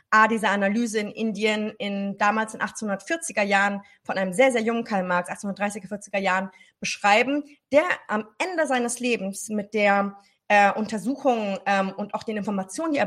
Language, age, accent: German, 20-39, German